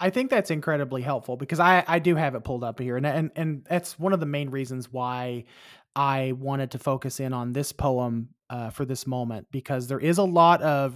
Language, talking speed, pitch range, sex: English, 230 wpm, 130-155 Hz, male